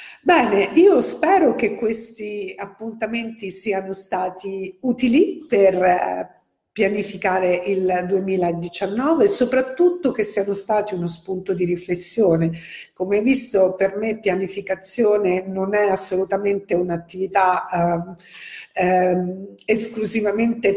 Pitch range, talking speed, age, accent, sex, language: 180-215 Hz, 95 wpm, 50-69, native, female, Italian